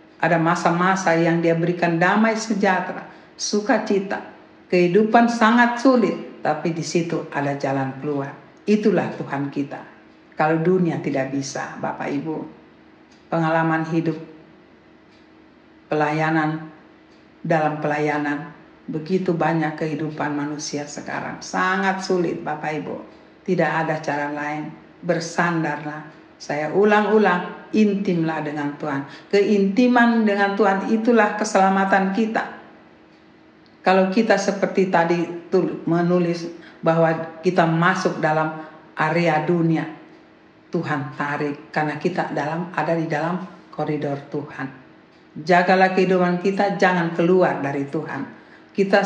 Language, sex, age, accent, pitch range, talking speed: Indonesian, female, 50-69, native, 150-190 Hz, 105 wpm